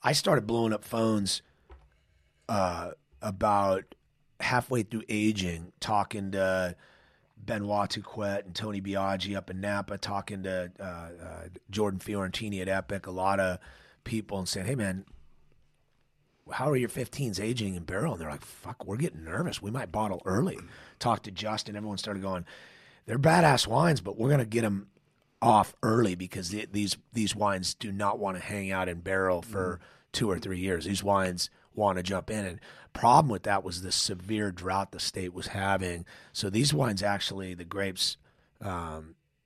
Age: 30-49